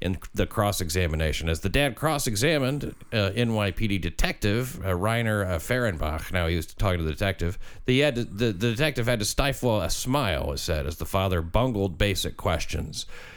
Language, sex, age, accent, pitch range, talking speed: English, male, 40-59, American, 85-120 Hz, 165 wpm